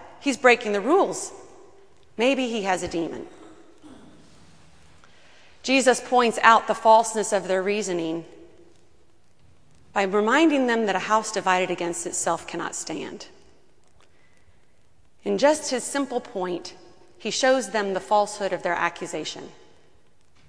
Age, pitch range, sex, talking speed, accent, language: 30-49, 180-260 Hz, female, 120 wpm, American, English